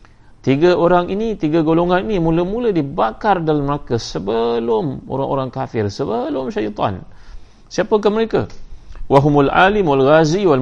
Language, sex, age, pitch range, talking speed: Malay, male, 30-49, 105-135 Hz, 125 wpm